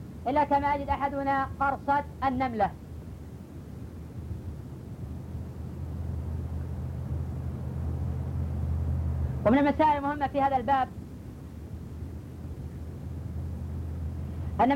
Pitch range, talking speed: 235-275 Hz, 55 wpm